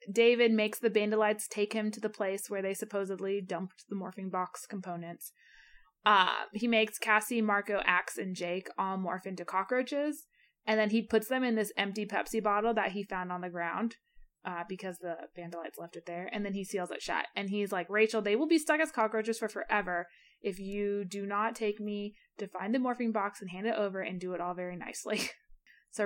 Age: 20-39